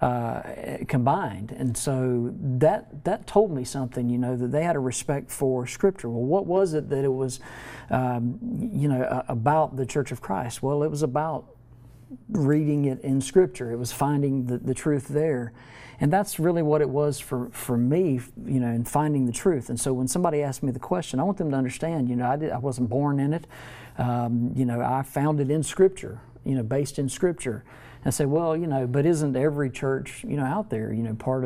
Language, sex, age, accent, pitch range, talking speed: English, male, 50-69, American, 125-145 Hz, 215 wpm